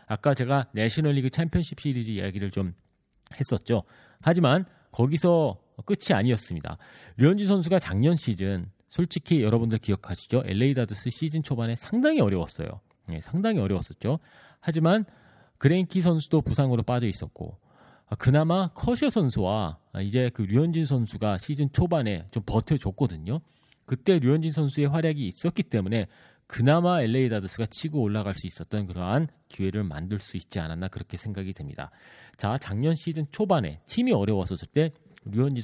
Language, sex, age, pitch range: Korean, male, 40-59, 100-160 Hz